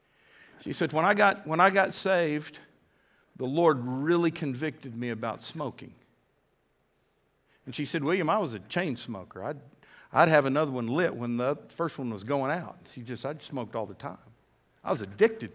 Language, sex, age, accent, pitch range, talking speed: English, male, 50-69, American, 125-165 Hz, 190 wpm